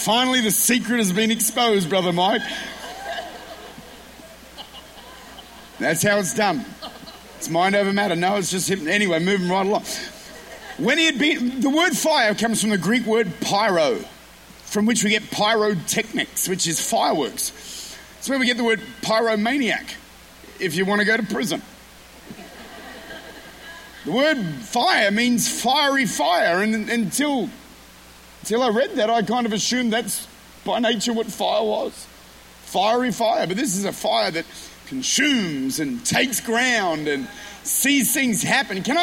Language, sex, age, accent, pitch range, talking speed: English, male, 40-59, Australian, 210-275 Hz, 145 wpm